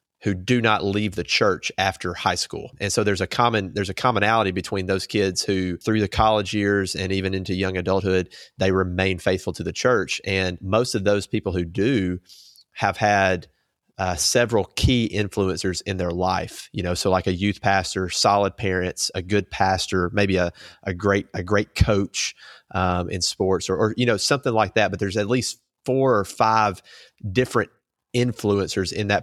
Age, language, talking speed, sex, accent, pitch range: 30-49, English, 190 wpm, male, American, 90-105 Hz